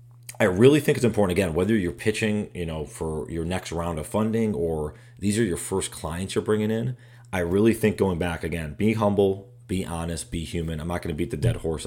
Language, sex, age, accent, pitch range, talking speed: English, male, 30-49, American, 85-120 Hz, 235 wpm